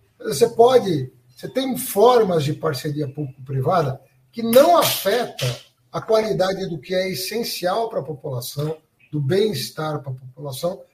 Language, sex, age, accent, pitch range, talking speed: Portuguese, male, 60-79, Brazilian, 150-240 Hz, 135 wpm